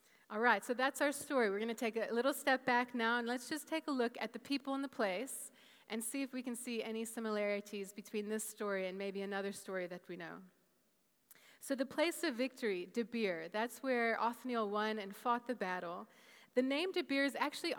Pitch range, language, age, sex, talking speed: 205-255 Hz, English, 20-39, female, 215 wpm